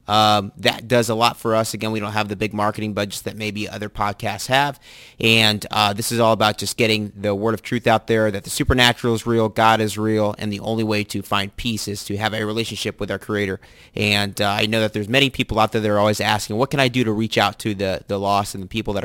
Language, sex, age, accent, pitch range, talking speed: English, male, 30-49, American, 100-115 Hz, 270 wpm